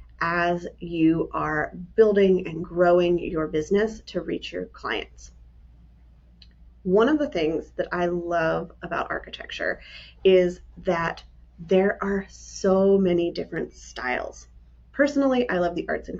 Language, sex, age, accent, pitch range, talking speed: English, female, 30-49, American, 165-200 Hz, 130 wpm